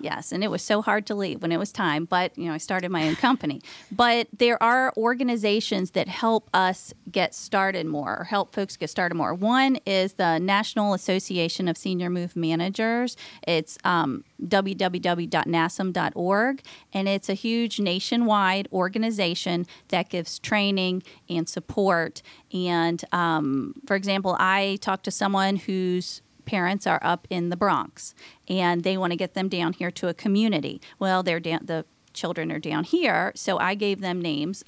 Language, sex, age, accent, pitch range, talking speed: English, female, 30-49, American, 175-210 Hz, 165 wpm